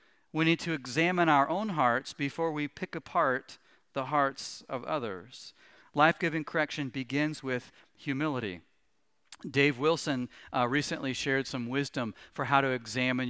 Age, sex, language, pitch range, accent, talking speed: 40-59, male, English, 140-210 Hz, American, 140 wpm